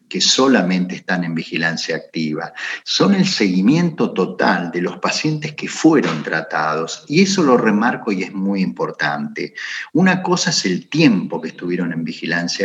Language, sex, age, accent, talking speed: Spanish, male, 50-69, Argentinian, 155 wpm